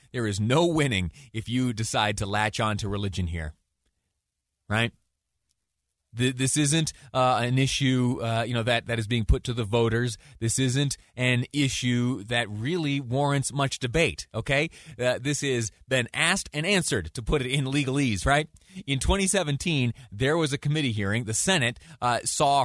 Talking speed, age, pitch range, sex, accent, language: 170 wpm, 30-49, 105-150 Hz, male, American, English